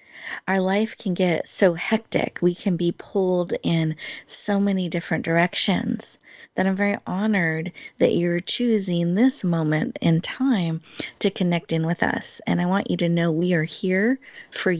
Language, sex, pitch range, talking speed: English, female, 170-220 Hz, 165 wpm